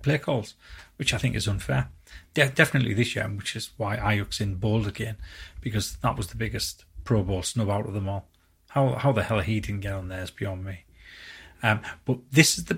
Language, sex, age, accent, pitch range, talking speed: English, male, 30-49, British, 100-125 Hz, 210 wpm